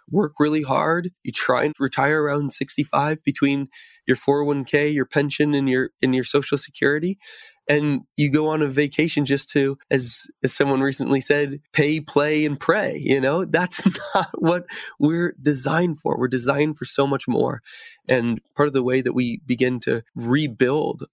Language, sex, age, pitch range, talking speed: English, male, 20-39, 120-145 Hz, 175 wpm